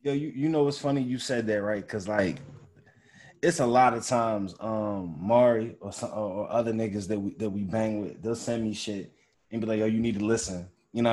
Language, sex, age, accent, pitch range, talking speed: English, male, 20-39, American, 115-150 Hz, 245 wpm